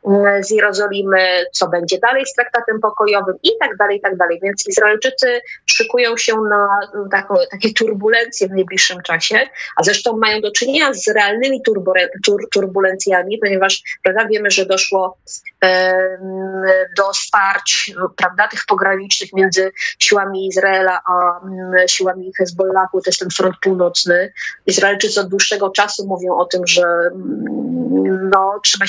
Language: Polish